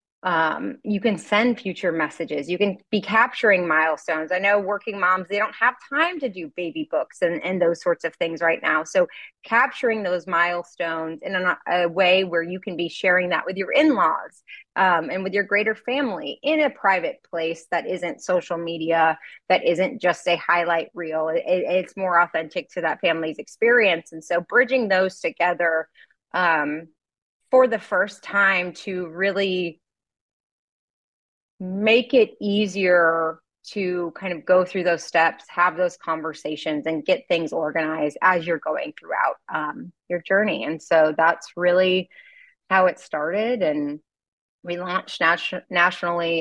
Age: 30-49